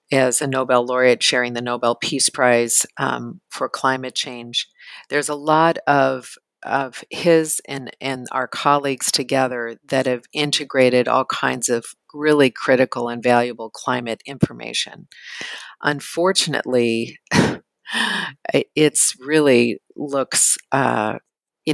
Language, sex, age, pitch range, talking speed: English, female, 50-69, 125-145 Hz, 115 wpm